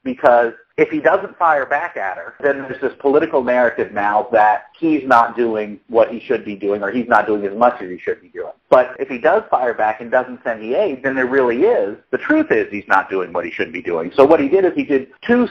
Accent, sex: American, male